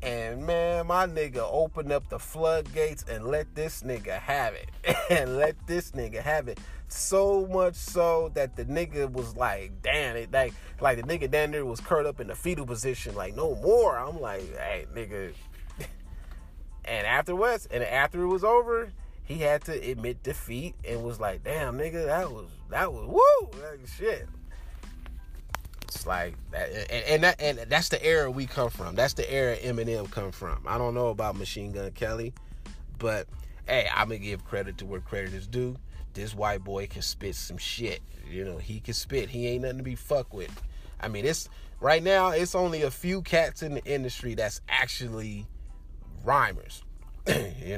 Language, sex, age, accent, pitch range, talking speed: English, male, 30-49, American, 90-150 Hz, 180 wpm